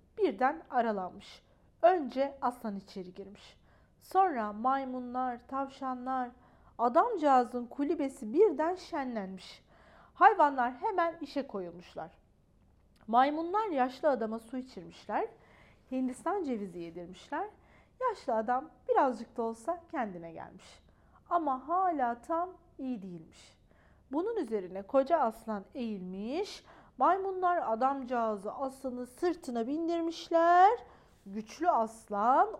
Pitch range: 225-330 Hz